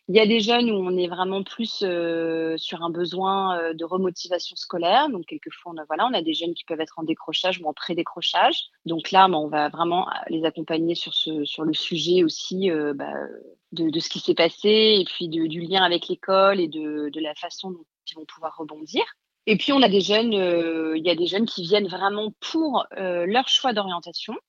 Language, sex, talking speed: French, female, 230 wpm